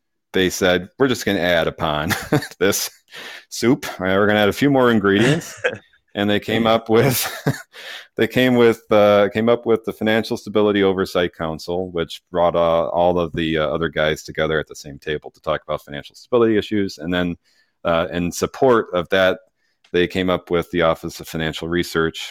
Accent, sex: American, male